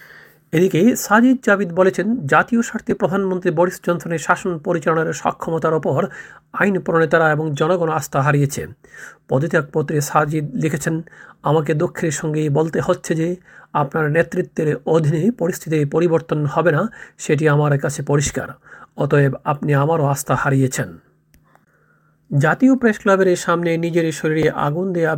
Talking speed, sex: 120 wpm, male